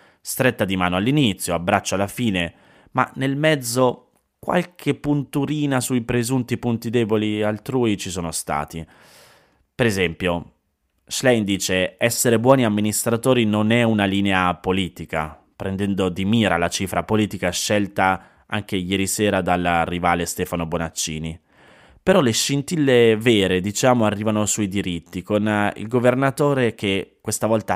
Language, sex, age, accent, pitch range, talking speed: Italian, male, 20-39, native, 90-120 Hz, 130 wpm